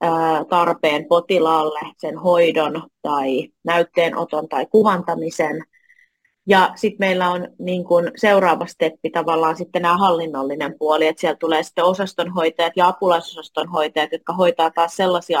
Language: Finnish